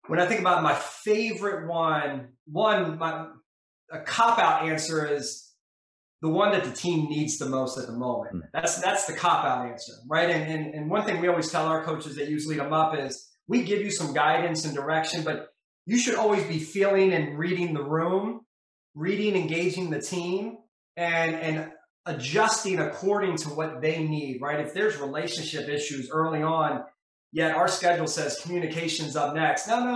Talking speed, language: 180 wpm, English